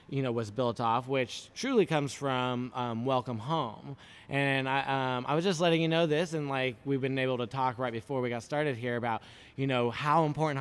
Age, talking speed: 20-39, 225 wpm